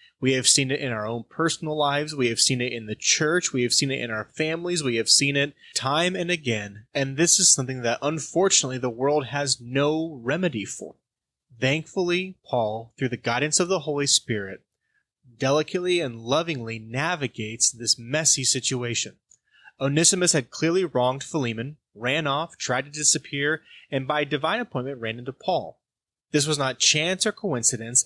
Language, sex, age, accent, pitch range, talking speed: English, male, 20-39, American, 125-160 Hz, 175 wpm